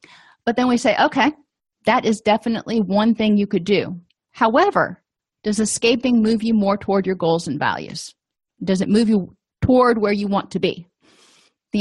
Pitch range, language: 195-245 Hz, English